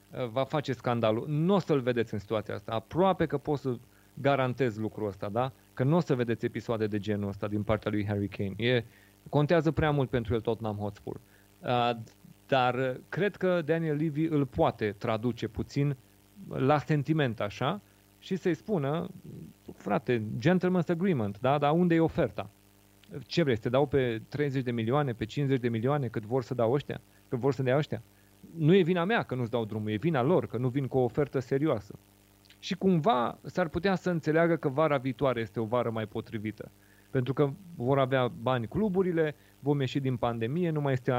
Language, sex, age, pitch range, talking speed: Romanian, male, 30-49, 110-150 Hz, 190 wpm